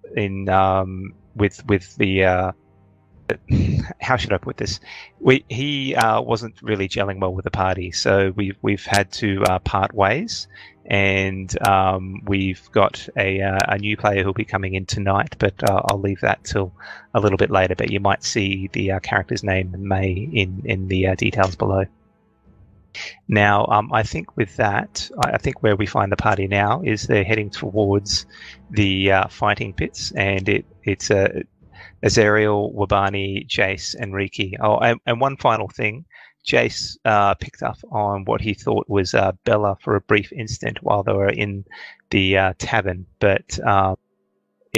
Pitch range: 95-105 Hz